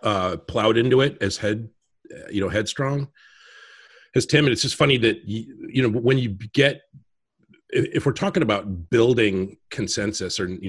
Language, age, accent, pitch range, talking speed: English, 40-59, American, 95-120 Hz, 170 wpm